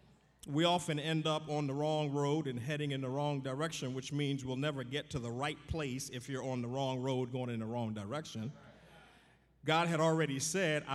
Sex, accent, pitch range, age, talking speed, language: male, American, 145-190 Hz, 50-69, 210 wpm, English